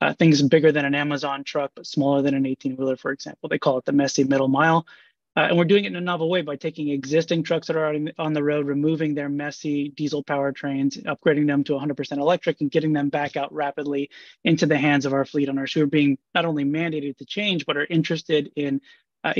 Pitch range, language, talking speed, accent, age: 140-155 Hz, English, 230 wpm, American, 20-39